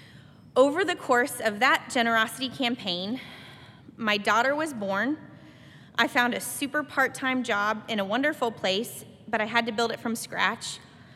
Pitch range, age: 220-290 Hz, 20-39